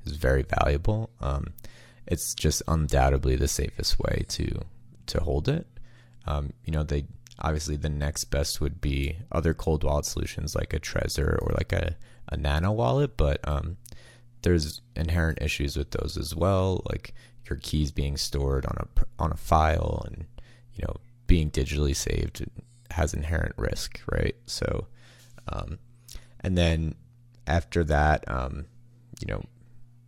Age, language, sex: 30-49, English, male